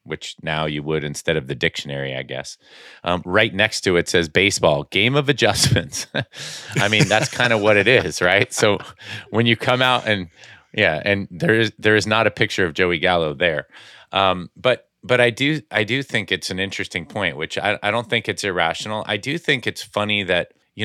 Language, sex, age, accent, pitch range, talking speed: English, male, 30-49, American, 80-105 Hz, 215 wpm